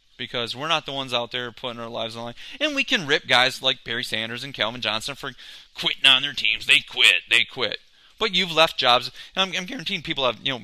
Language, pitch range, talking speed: English, 120-150 Hz, 250 wpm